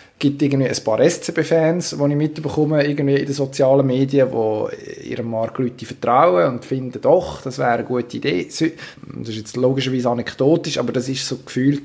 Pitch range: 120-140 Hz